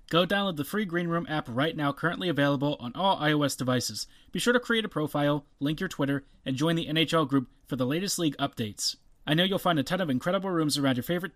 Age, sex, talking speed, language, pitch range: 30-49, male, 245 wpm, English, 140-180 Hz